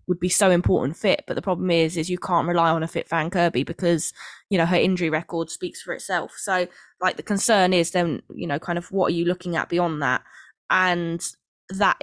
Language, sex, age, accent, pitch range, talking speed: English, female, 20-39, British, 165-185 Hz, 230 wpm